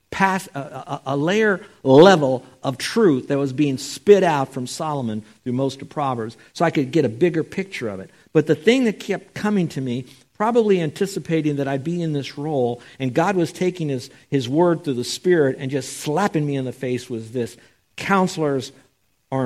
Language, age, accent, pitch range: English, 60-79, American, 115-150 Hz